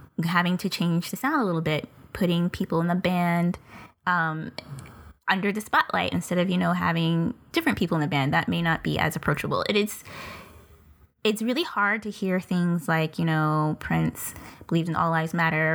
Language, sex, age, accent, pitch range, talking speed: English, female, 10-29, American, 165-205 Hz, 185 wpm